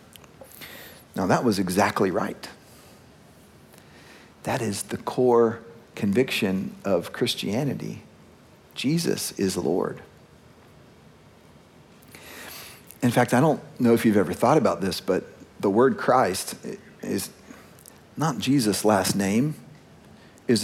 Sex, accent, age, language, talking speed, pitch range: male, American, 40-59, English, 105 wpm, 135-205 Hz